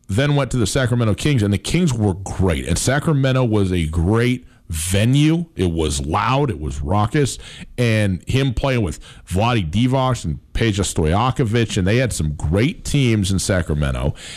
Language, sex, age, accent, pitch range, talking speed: English, male, 40-59, American, 100-150 Hz, 165 wpm